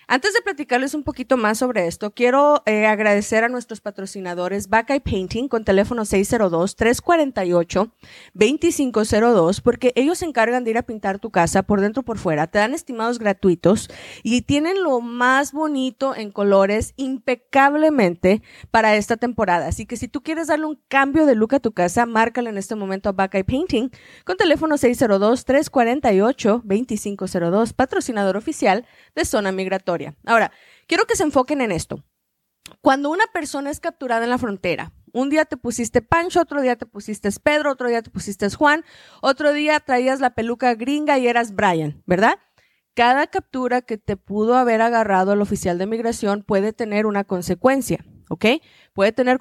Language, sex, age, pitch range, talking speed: Spanish, female, 20-39, 205-260 Hz, 165 wpm